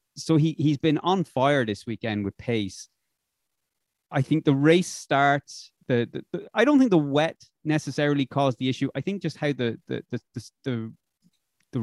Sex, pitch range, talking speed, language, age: male, 110-145 Hz, 190 wpm, English, 30-49